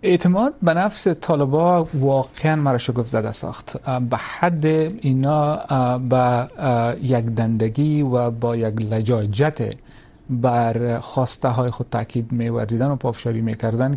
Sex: male